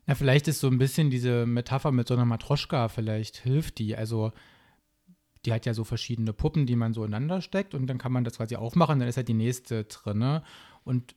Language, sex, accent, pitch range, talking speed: German, male, German, 120-140 Hz, 225 wpm